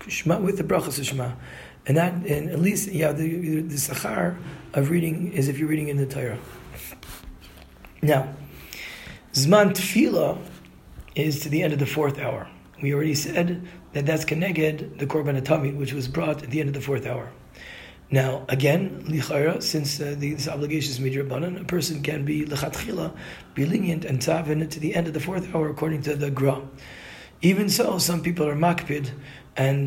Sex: male